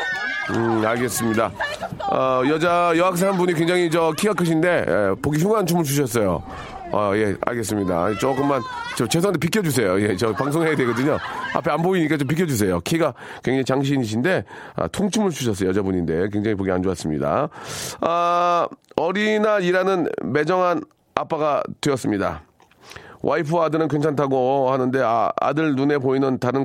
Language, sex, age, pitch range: Korean, male, 30-49, 110-160 Hz